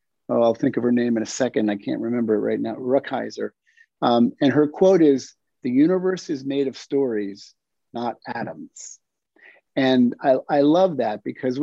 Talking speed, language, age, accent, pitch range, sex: 180 wpm, English, 50-69, American, 120-165 Hz, male